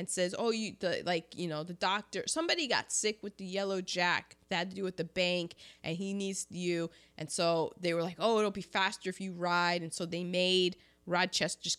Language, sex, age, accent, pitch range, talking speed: English, female, 20-39, American, 165-225 Hz, 225 wpm